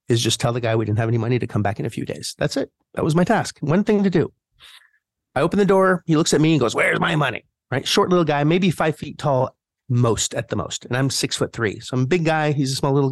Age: 30-49